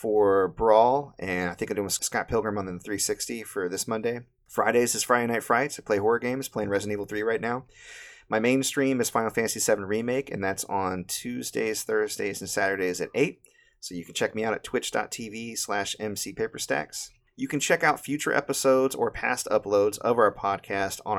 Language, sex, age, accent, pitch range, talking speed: English, male, 30-49, American, 100-125 Hz, 195 wpm